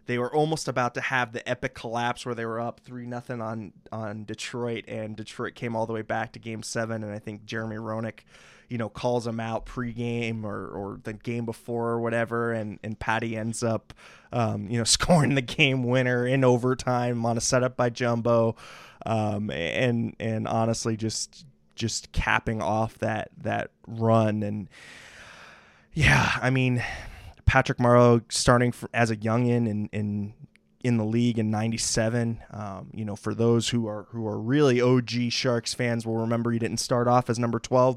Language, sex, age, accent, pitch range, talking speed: English, male, 20-39, American, 110-120 Hz, 180 wpm